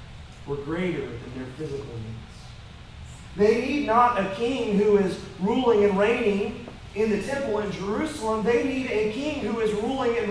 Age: 40-59